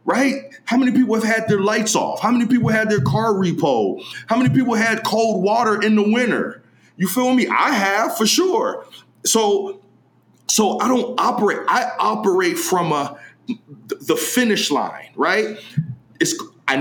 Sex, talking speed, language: male, 170 wpm, English